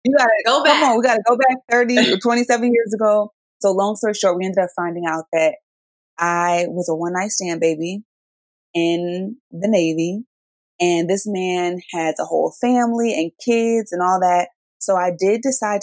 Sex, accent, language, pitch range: female, American, English, 165-205 Hz